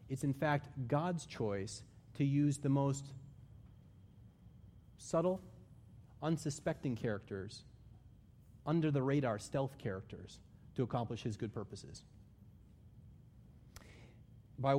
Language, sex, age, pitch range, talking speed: English, male, 30-49, 110-140 Hz, 85 wpm